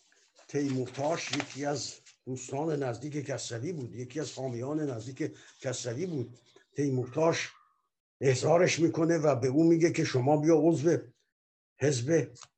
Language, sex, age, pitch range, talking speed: Persian, male, 60-79, 125-165 Hz, 120 wpm